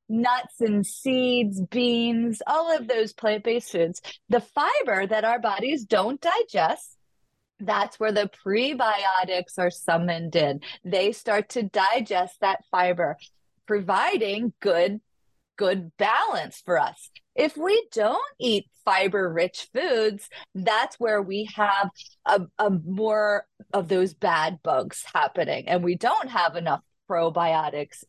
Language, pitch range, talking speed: English, 190-250 Hz, 130 wpm